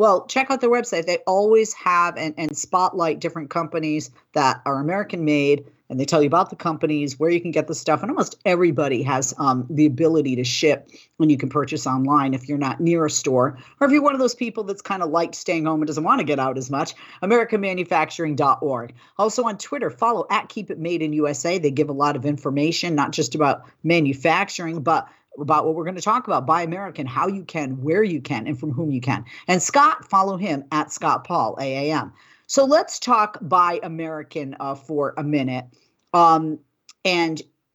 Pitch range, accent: 145-185 Hz, American